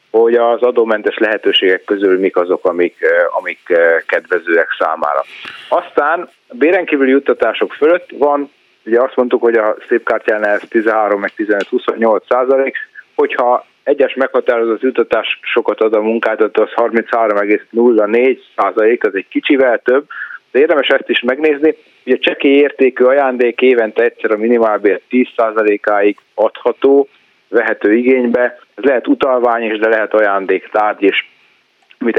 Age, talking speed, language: 30-49, 125 wpm, Hungarian